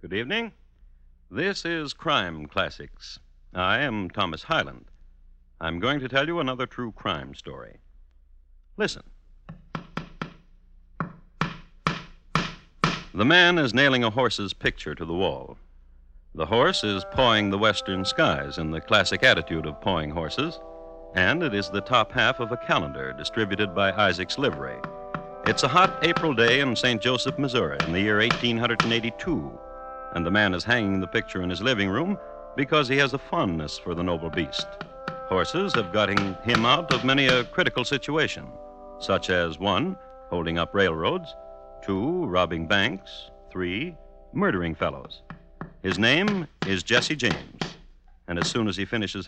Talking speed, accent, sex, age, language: 150 wpm, American, male, 60-79, English